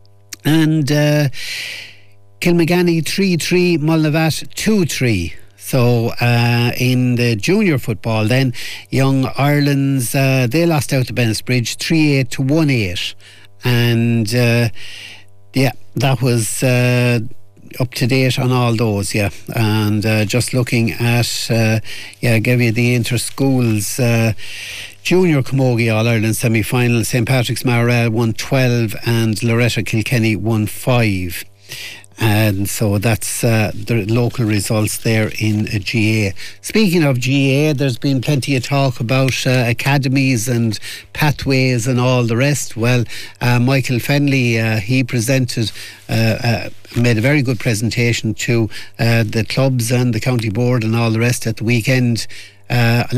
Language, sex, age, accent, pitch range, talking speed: English, male, 60-79, Irish, 110-130 Hz, 140 wpm